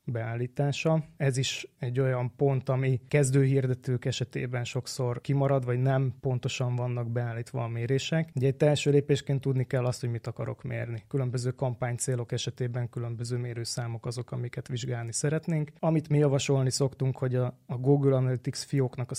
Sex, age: male, 20-39